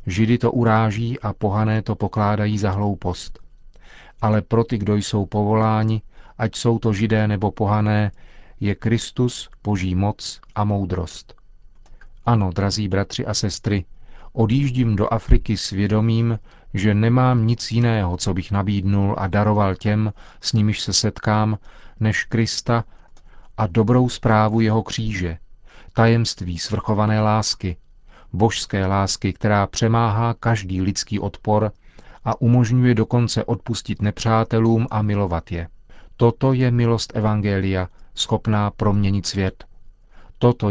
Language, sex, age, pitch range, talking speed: Czech, male, 40-59, 100-115 Hz, 125 wpm